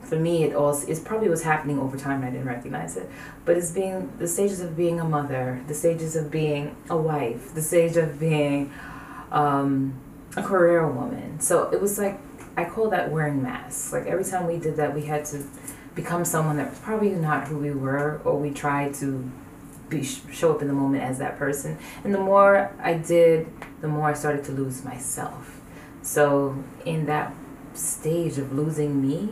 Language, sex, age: English, female, 20-39